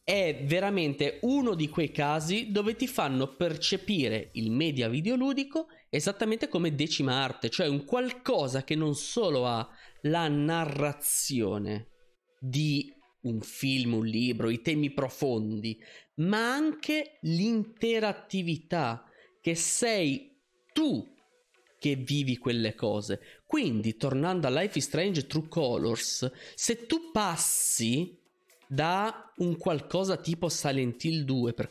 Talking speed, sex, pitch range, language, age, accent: 120 wpm, male, 120-180 Hz, Italian, 20-39, native